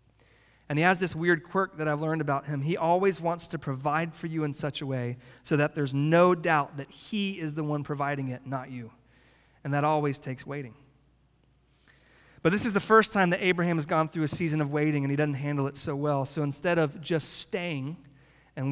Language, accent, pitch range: English, American, 145-180 Hz